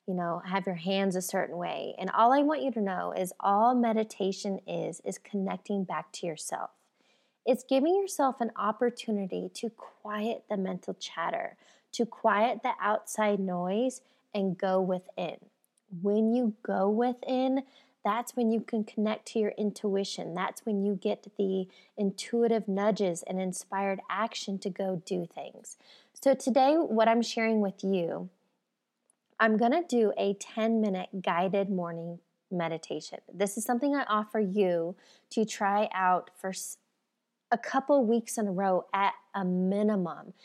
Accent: American